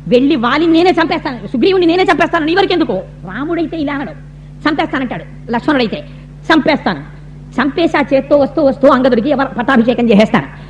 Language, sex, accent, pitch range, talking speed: Telugu, female, native, 240-310 Hz, 130 wpm